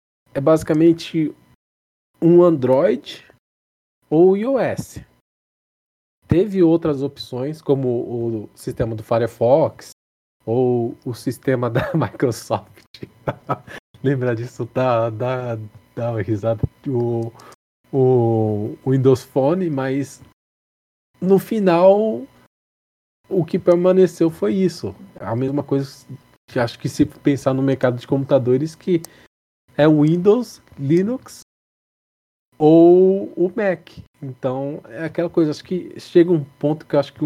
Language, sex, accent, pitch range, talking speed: Portuguese, male, Brazilian, 120-160 Hz, 115 wpm